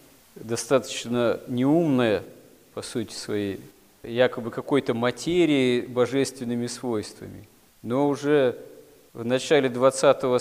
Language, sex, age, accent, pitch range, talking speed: Russian, male, 40-59, native, 115-130 Hz, 85 wpm